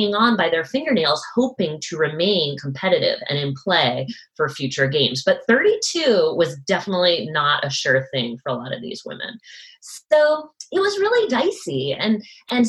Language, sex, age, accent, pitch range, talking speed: English, female, 20-39, American, 155-245 Hz, 165 wpm